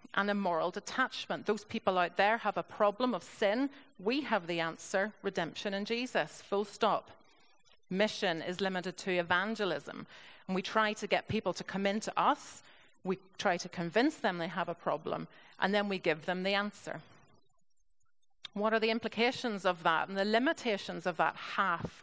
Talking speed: 175 wpm